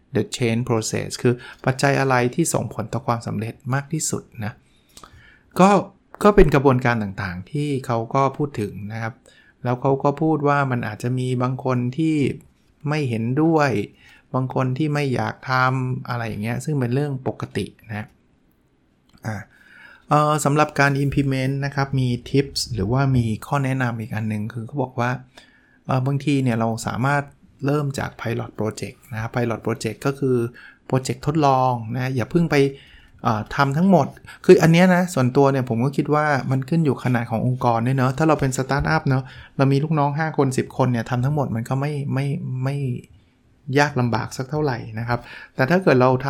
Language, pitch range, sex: Thai, 115-140 Hz, male